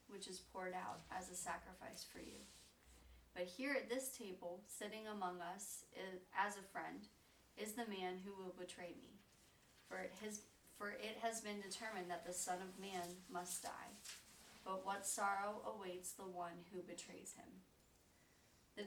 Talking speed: 160 wpm